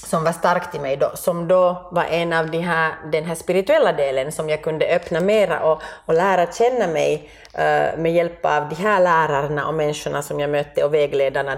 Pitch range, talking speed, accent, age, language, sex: 155-190 Hz, 215 wpm, Swedish, 30-49, Finnish, female